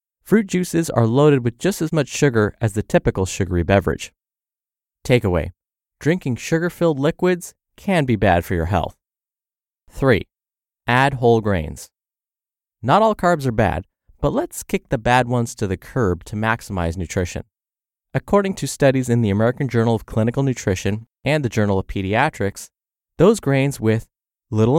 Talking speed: 155 wpm